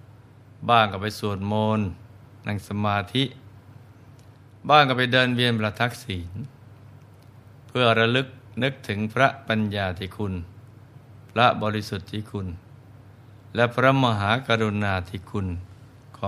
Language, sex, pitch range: Thai, male, 105-120 Hz